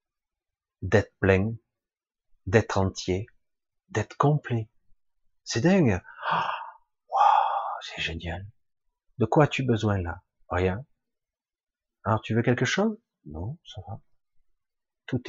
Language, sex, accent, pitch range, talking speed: French, male, French, 95-150 Hz, 105 wpm